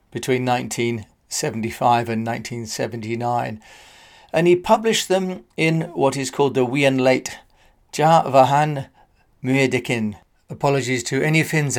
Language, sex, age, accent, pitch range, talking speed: English, male, 40-59, British, 125-165 Hz, 105 wpm